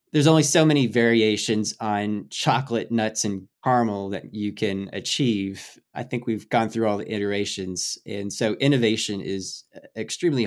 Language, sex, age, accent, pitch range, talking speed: English, male, 20-39, American, 95-115 Hz, 155 wpm